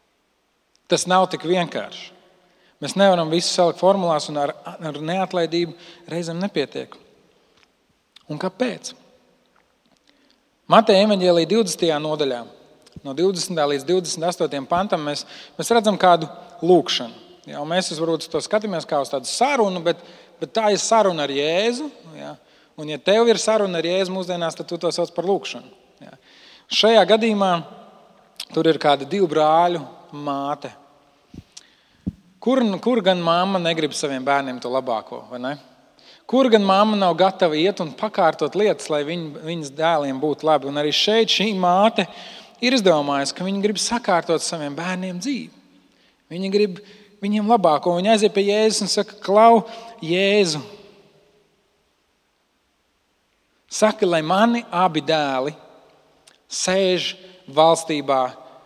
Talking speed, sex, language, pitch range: 130 wpm, male, English, 155-205 Hz